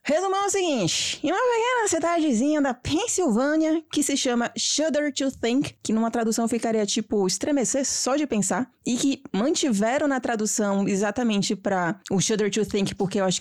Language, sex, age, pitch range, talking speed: Portuguese, female, 20-39, 200-285 Hz, 175 wpm